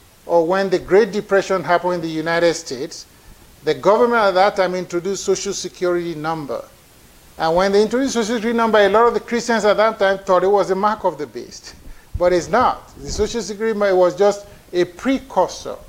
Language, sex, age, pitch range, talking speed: English, male, 50-69, 155-195 Hz, 195 wpm